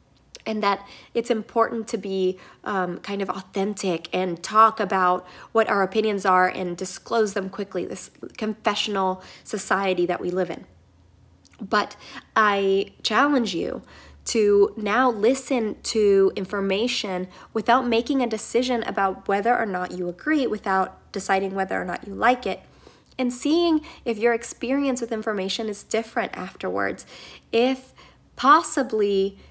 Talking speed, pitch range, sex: 135 wpm, 190-235 Hz, female